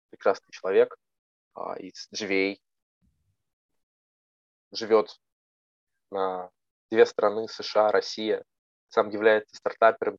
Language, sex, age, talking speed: Russian, male, 20-39, 75 wpm